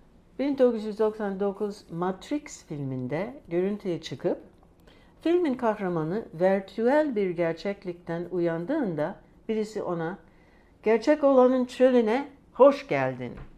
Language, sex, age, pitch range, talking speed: Turkish, female, 60-79, 155-220 Hz, 80 wpm